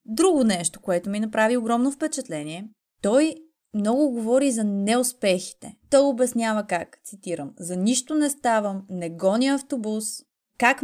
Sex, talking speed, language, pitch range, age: female, 135 wpm, Bulgarian, 195-260 Hz, 20-39